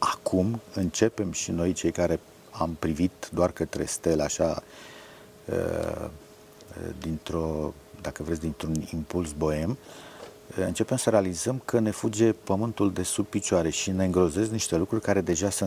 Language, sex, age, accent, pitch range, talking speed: Romanian, male, 50-69, native, 85-105 Hz, 140 wpm